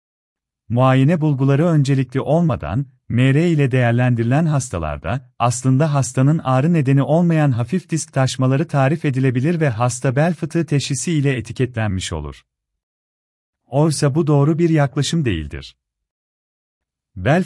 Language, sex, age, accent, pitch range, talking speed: Turkish, male, 40-59, native, 115-150 Hz, 115 wpm